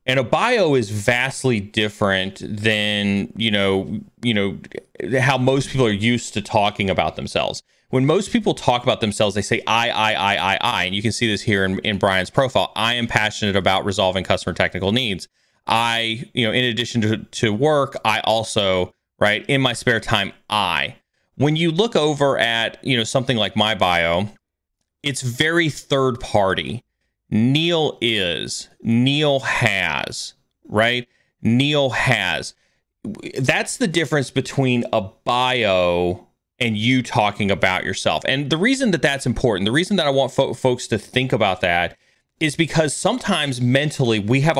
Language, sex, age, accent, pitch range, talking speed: English, male, 30-49, American, 105-135 Hz, 165 wpm